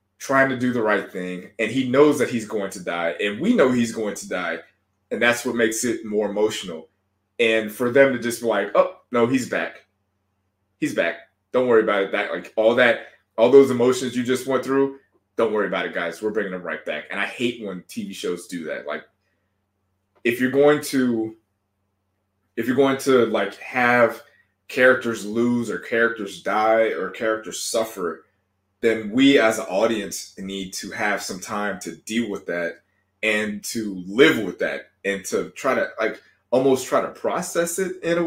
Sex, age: male, 20-39